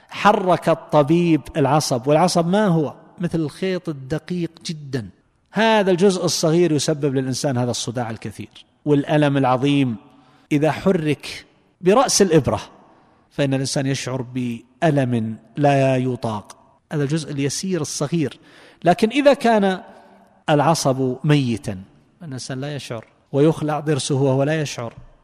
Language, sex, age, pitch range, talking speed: Arabic, male, 50-69, 130-165 Hz, 110 wpm